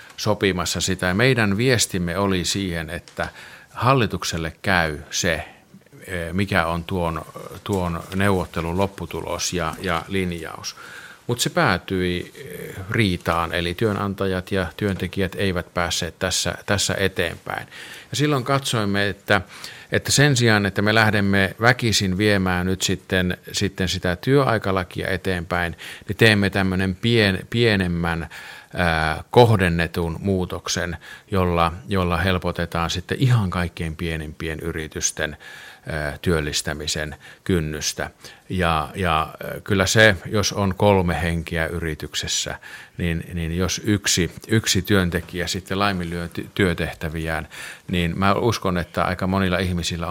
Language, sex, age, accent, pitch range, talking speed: Finnish, male, 50-69, native, 85-100 Hz, 110 wpm